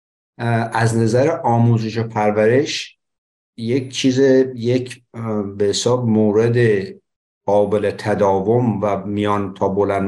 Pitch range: 105-130 Hz